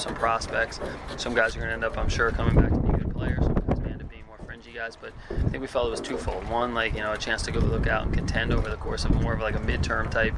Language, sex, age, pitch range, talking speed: English, male, 20-39, 105-115 Hz, 305 wpm